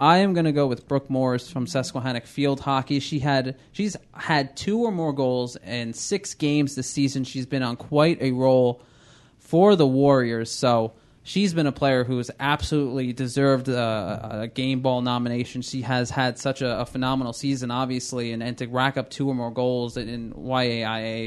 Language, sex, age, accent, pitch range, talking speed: English, male, 20-39, American, 120-140 Hz, 190 wpm